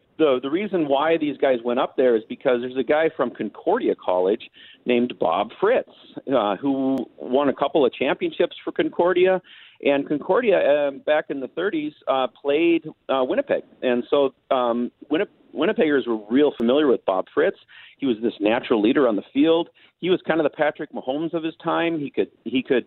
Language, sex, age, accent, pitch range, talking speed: English, male, 40-59, American, 120-160 Hz, 185 wpm